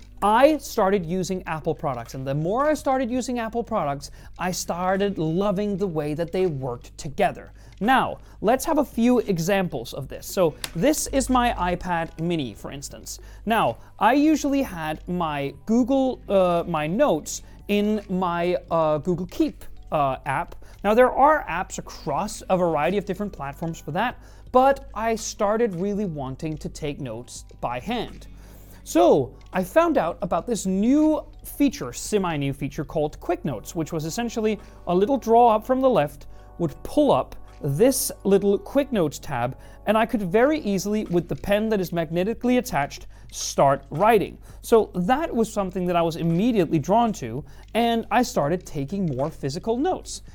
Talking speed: 165 wpm